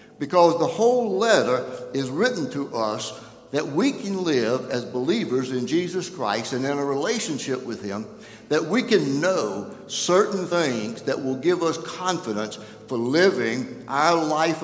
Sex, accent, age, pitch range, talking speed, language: male, American, 60-79, 135-175 Hz, 155 wpm, English